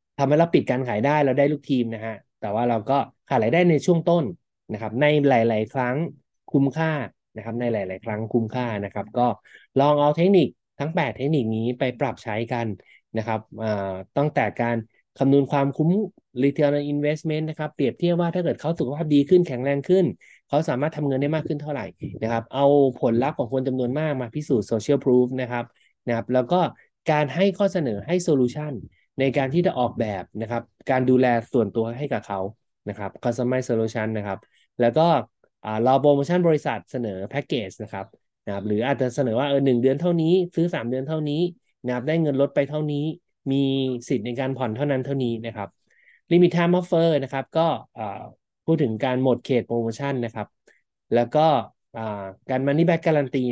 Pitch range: 115-150 Hz